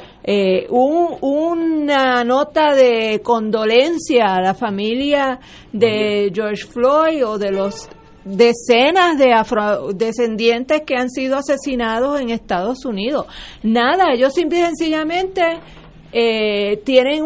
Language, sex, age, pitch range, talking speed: Spanish, female, 40-59, 215-275 Hz, 110 wpm